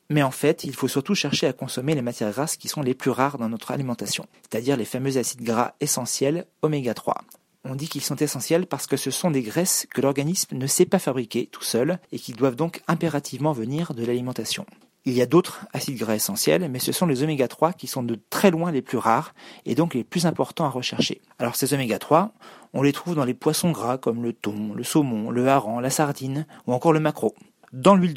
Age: 40-59